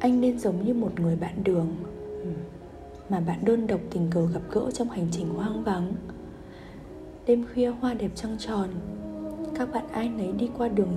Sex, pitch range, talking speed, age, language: female, 175-230 Hz, 185 wpm, 20-39, Vietnamese